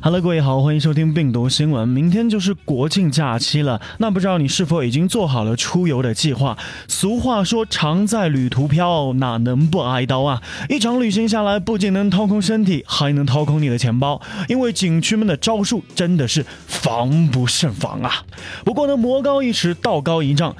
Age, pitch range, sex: 20-39, 145-215 Hz, male